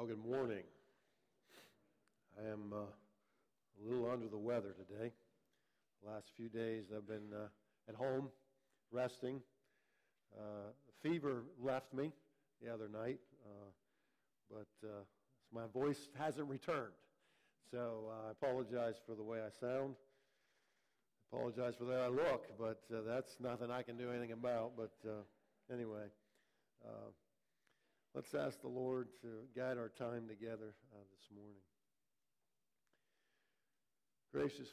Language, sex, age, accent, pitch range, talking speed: English, male, 50-69, American, 110-130 Hz, 140 wpm